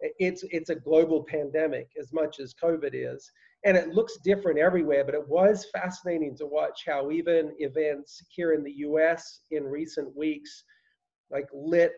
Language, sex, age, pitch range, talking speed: English, male, 40-59, 135-170 Hz, 165 wpm